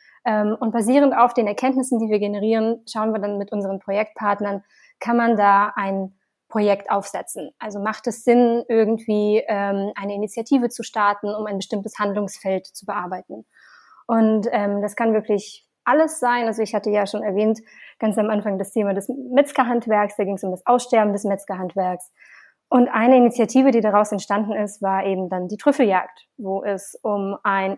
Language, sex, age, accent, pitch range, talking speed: German, female, 20-39, German, 200-230 Hz, 170 wpm